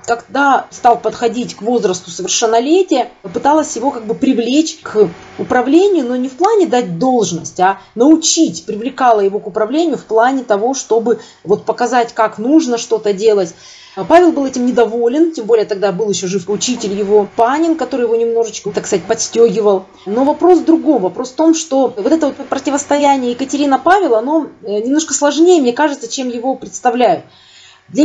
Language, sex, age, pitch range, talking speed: Russian, female, 30-49, 230-320 Hz, 165 wpm